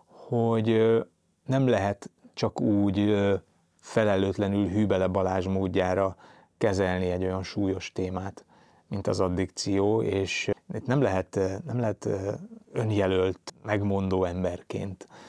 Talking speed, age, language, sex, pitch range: 100 wpm, 30-49, Hungarian, male, 95-110 Hz